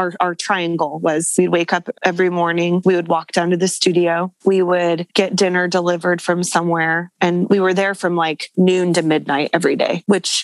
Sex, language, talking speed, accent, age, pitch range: female, English, 200 wpm, American, 20-39, 170-195 Hz